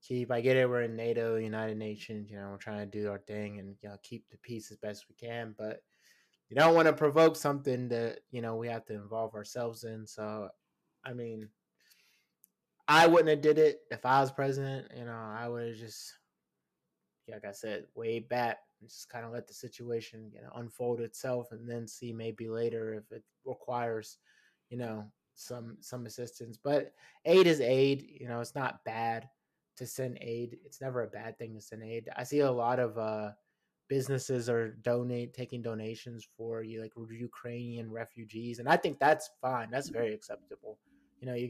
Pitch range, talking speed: 110-125 Hz, 200 wpm